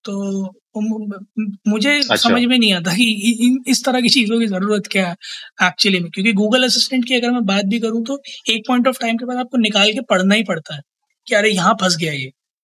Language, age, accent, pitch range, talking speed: Hindi, 20-39, native, 180-220 Hz, 220 wpm